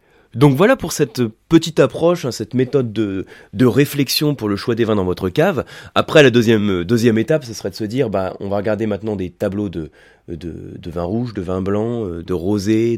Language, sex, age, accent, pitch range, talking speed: French, male, 30-49, French, 95-125 Hz, 215 wpm